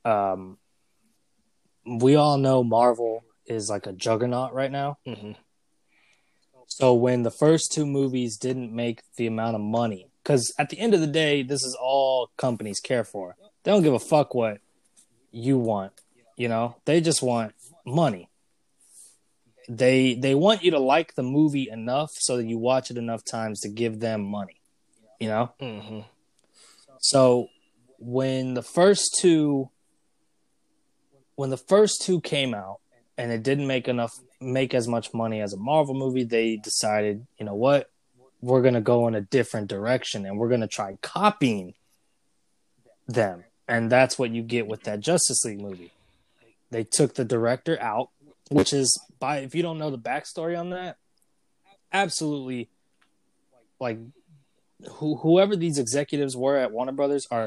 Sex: male